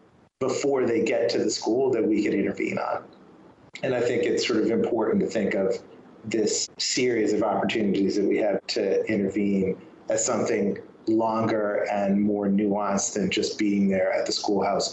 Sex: male